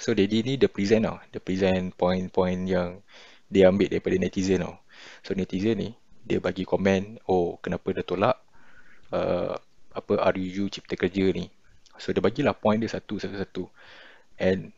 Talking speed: 160 wpm